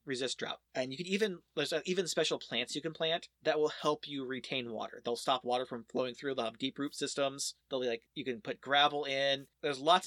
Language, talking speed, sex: English, 240 wpm, male